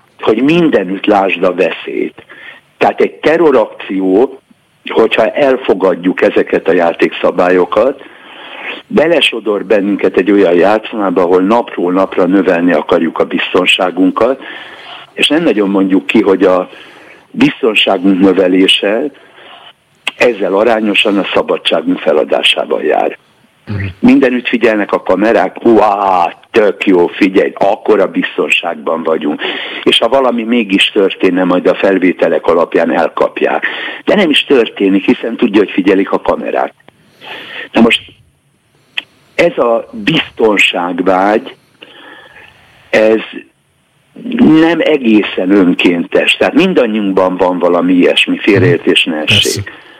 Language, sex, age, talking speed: Hungarian, male, 60-79, 105 wpm